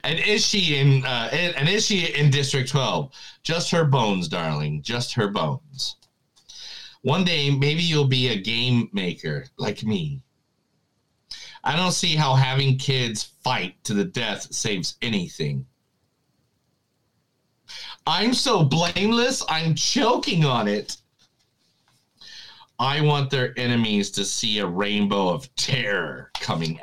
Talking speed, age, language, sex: 130 wpm, 40-59, English, male